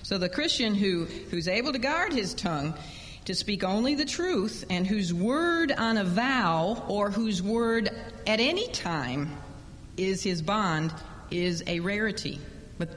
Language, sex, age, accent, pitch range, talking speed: English, female, 50-69, American, 155-225 Hz, 155 wpm